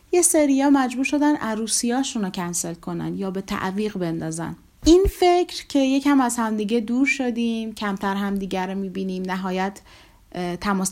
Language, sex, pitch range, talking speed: Persian, female, 190-255 Hz, 150 wpm